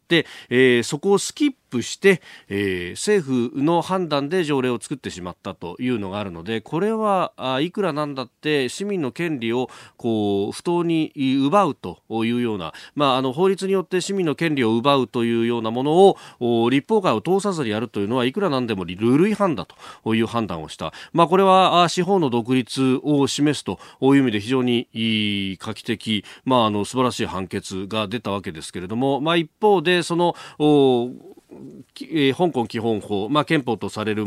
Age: 40-59